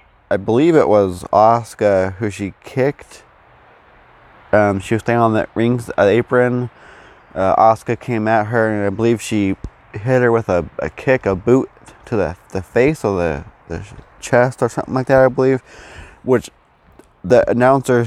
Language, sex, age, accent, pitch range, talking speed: English, male, 20-39, American, 105-125 Hz, 170 wpm